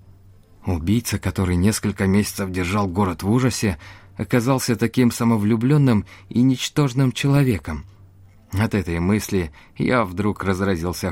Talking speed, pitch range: 110 wpm, 90-110 Hz